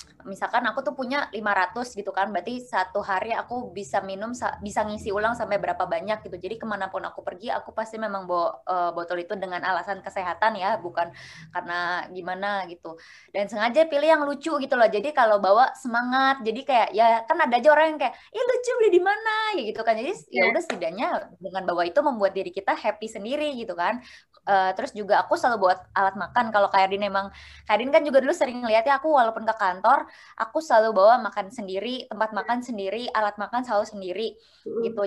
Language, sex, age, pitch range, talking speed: Indonesian, female, 20-39, 195-260 Hz, 190 wpm